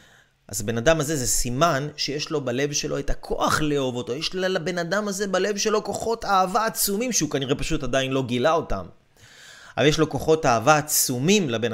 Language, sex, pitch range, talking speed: Hebrew, male, 120-165 Hz, 190 wpm